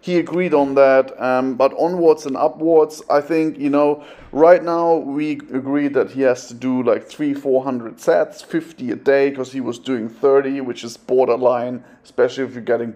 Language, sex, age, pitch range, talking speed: English, male, 30-49, 130-155 Hz, 195 wpm